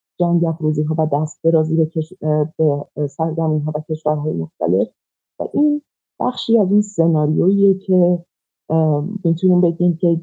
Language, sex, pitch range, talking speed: Persian, female, 150-175 Hz, 125 wpm